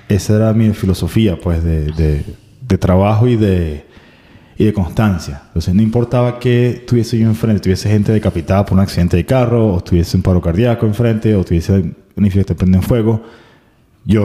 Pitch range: 95-110 Hz